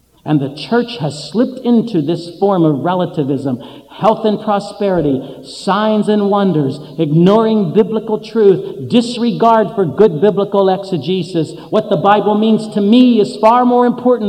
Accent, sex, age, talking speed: American, male, 50-69, 145 wpm